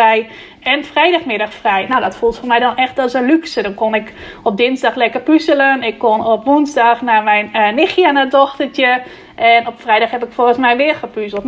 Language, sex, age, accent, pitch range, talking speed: Dutch, female, 20-39, Dutch, 225-270 Hz, 210 wpm